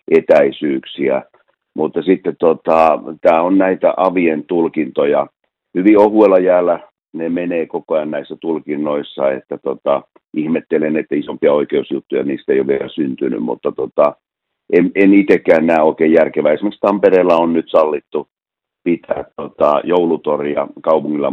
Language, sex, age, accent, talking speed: Finnish, male, 50-69, native, 130 wpm